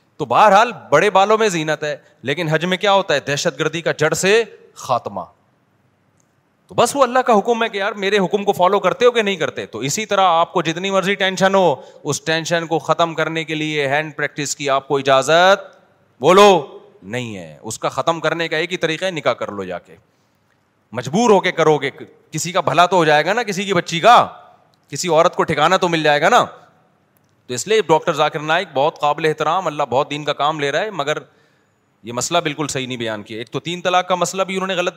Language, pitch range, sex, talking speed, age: Urdu, 140-180 Hz, male, 230 wpm, 30-49